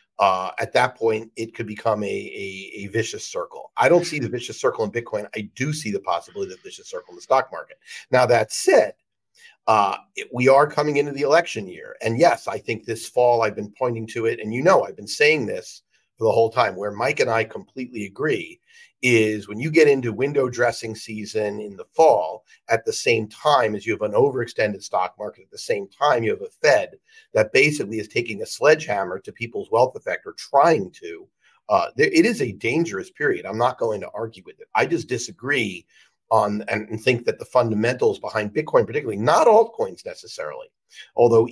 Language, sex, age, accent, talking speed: English, male, 50-69, American, 210 wpm